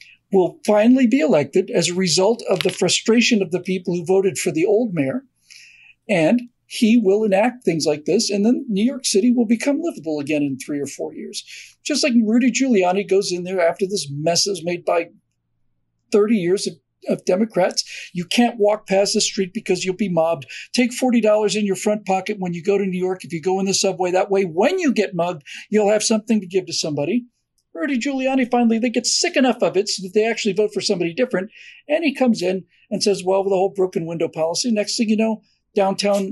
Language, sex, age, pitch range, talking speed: English, male, 50-69, 185-235 Hz, 220 wpm